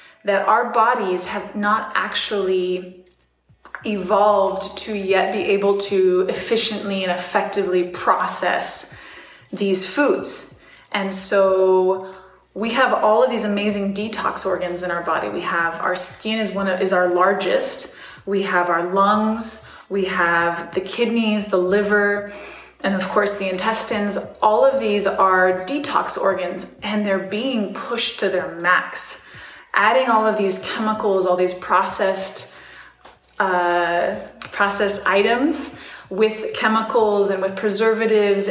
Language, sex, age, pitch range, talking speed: English, female, 20-39, 190-220 Hz, 130 wpm